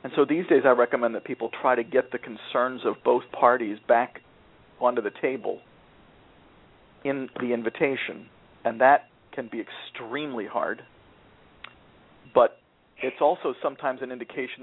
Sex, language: male, English